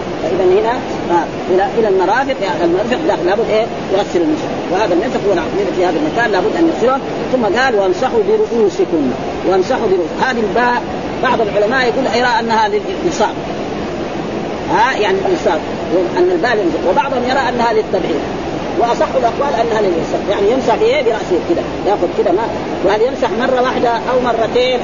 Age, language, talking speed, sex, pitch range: 40-59, Arabic, 150 wpm, female, 230-340 Hz